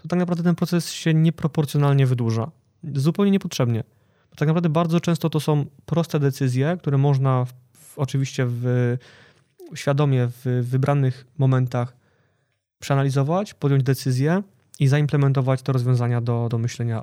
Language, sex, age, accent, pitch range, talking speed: Polish, male, 20-39, native, 130-150 Hz, 125 wpm